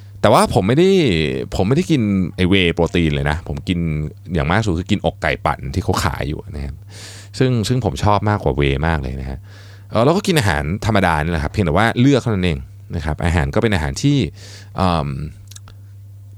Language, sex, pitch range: Thai, male, 85-110 Hz